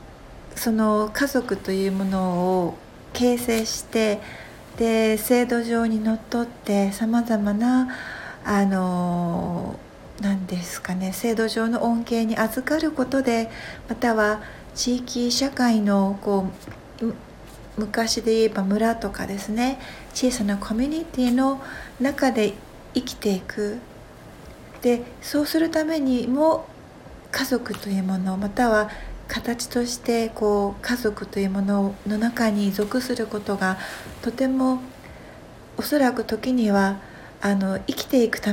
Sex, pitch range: female, 200-245 Hz